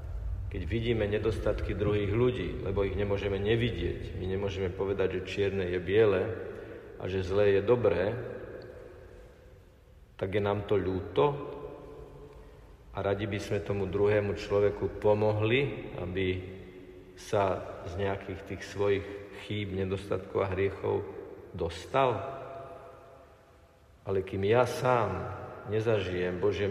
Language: Slovak